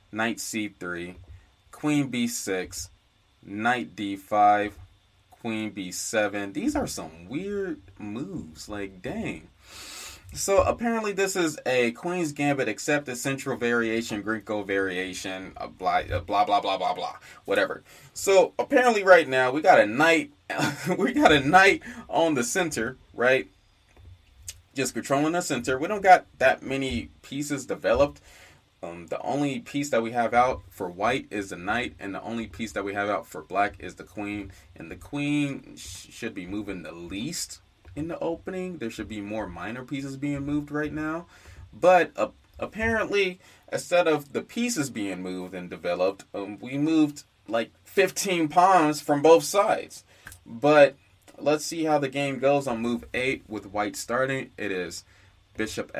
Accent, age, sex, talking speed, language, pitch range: American, 20-39, male, 155 wpm, English, 100-150 Hz